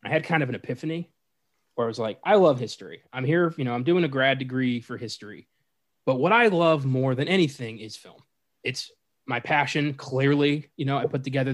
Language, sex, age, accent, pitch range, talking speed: English, male, 20-39, American, 120-150 Hz, 220 wpm